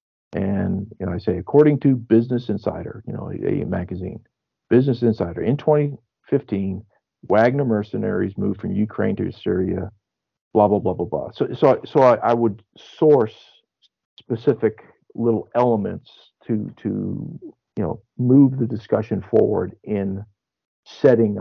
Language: English